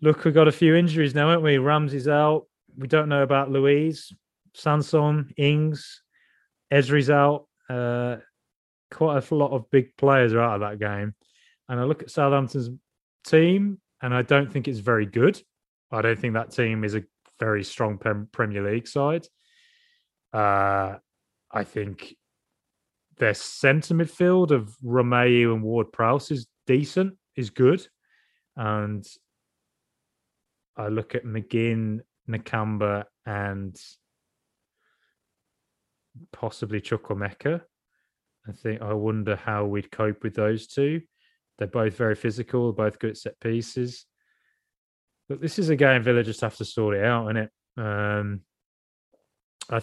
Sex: male